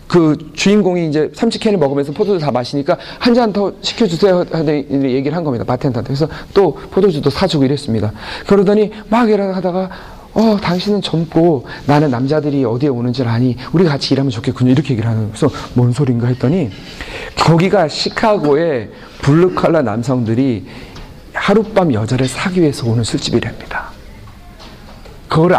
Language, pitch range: Korean, 130-195 Hz